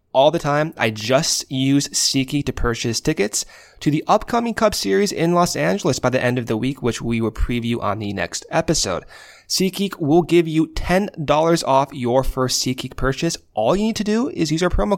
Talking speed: 205 wpm